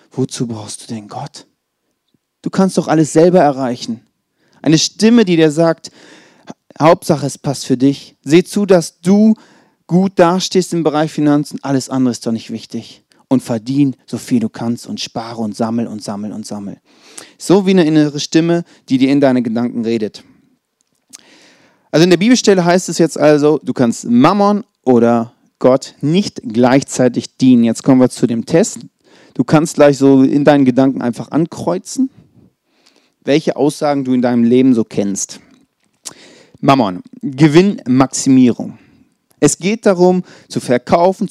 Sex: male